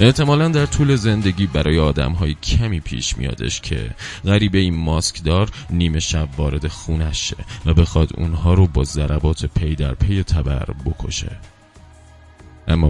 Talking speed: 145 wpm